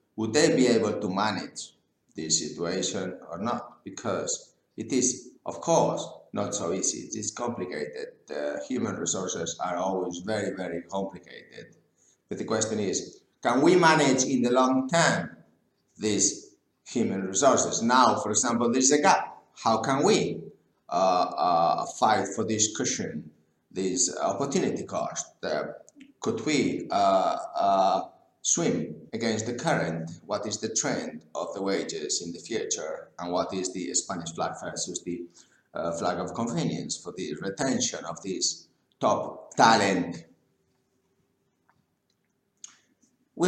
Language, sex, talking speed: English, male, 140 wpm